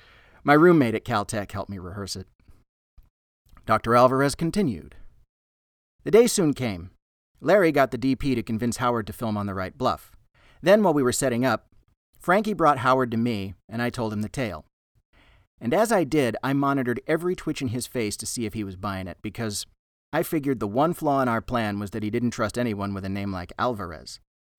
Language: English